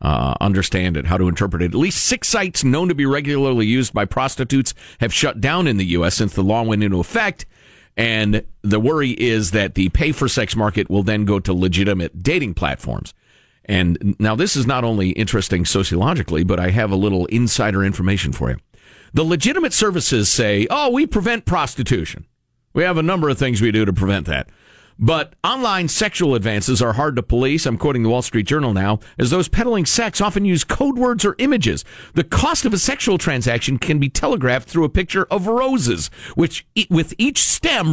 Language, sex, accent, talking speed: English, male, American, 195 wpm